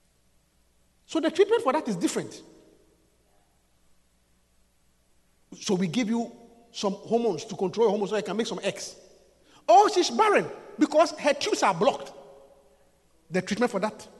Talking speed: 150 wpm